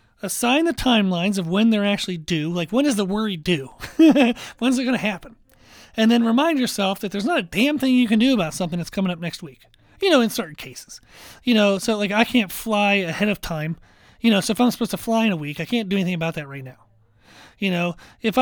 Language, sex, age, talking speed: English, male, 30-49, 250 wpm